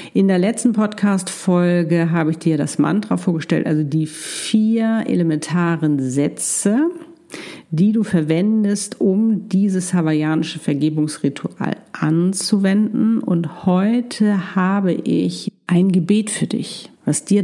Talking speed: 115 wpm